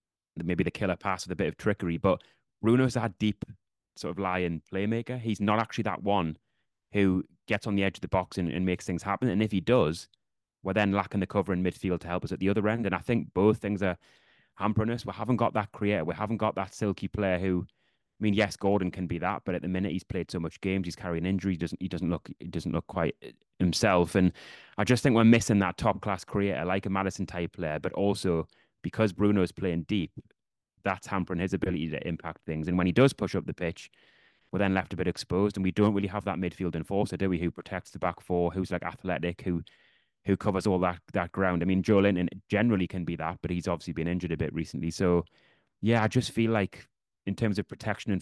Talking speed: 245 wpm